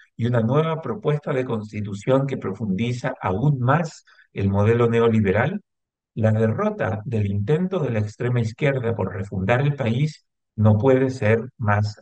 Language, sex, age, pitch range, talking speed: Spanish, male, 50-69, 105-140 Hz, 145 wpm